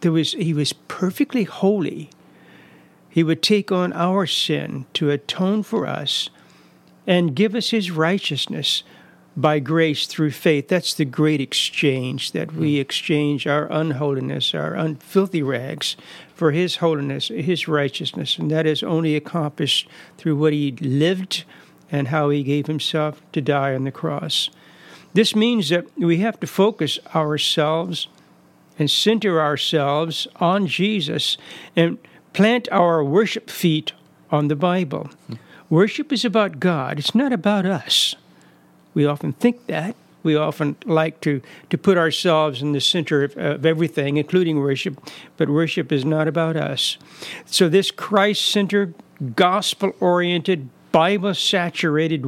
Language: English